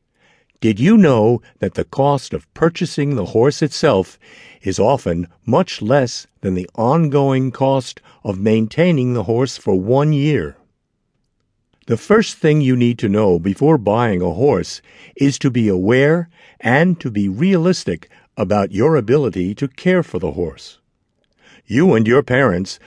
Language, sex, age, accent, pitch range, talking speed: English, male, 60-79, American, 105-150 Hz, 150 wpm